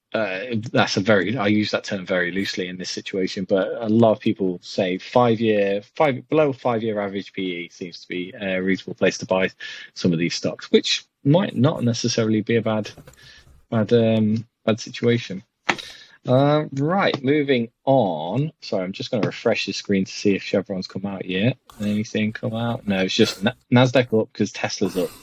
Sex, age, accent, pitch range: male, 20-39, British, 100-120 Hz